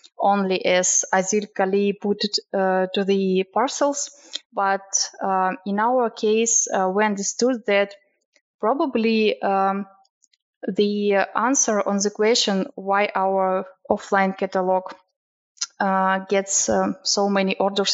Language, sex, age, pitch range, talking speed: English, female, 20-39, 195-230 Hz, 120 wpm